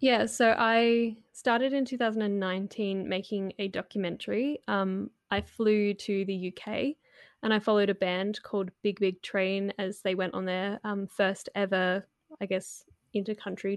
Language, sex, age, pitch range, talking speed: English, female, 10-29, 190-215 Hz, 155 wpm